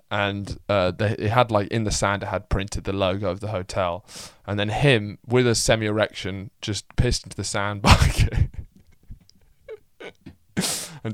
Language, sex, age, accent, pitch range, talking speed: English, male, 20-39, British, 95-120 Hz, 150 wpm